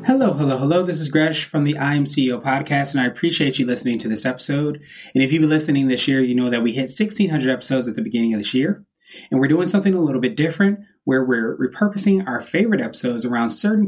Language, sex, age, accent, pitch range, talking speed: English, male, 20-39, American, 130-160 Hz, 240 wpm